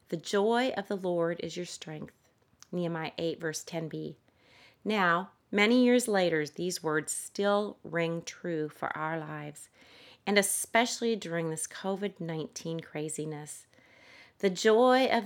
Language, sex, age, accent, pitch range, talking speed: English, female, 30-49, American, 160-215 Hz, 130 wpm